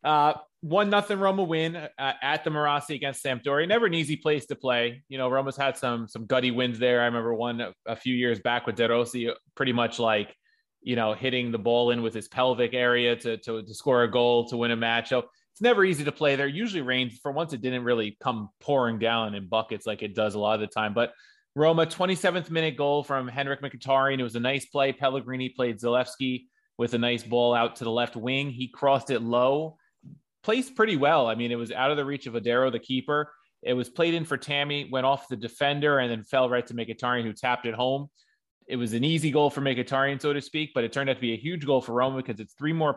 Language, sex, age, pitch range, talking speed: English, male, 20-39, 120-145 Hz, 245 wpm